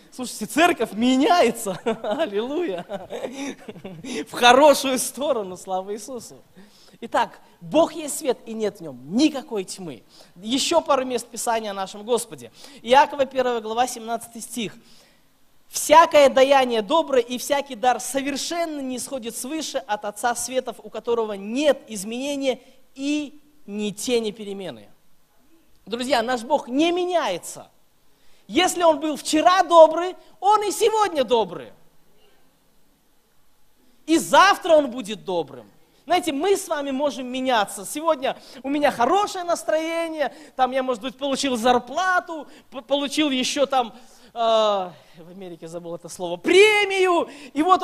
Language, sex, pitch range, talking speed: Russian, male, 230-310 Hz, 125 wpm